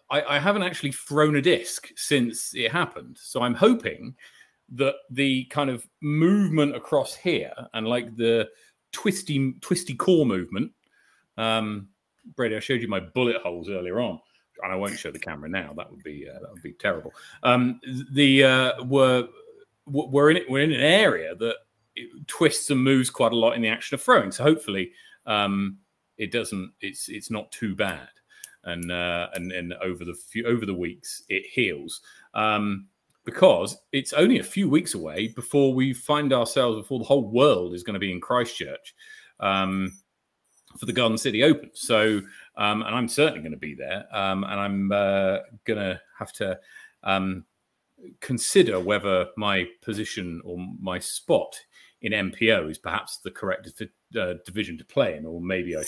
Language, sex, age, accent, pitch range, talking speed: English, male, 40-59, British, 95-140 Hz, 180 wpm